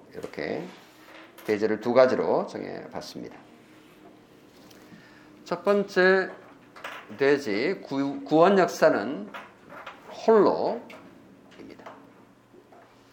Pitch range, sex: 155-215 Hz, male